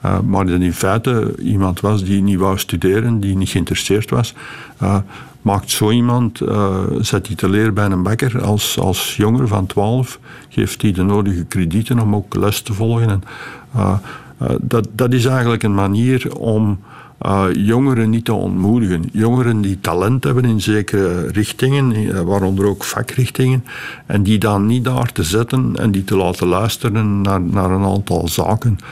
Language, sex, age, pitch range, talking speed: Dutch, male, 60-79, 95-115 Hz, 170 wpm